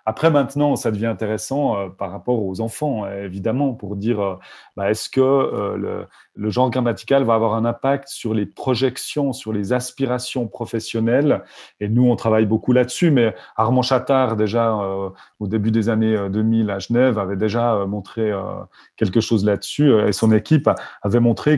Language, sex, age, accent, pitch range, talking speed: French, male, 30-49, French, 110-140 Hz, 180 wpm